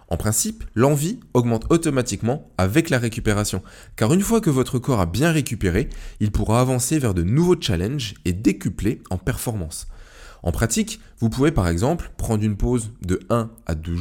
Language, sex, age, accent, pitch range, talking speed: French, male, 20-39, French, 95-135 Hz, 175 wpm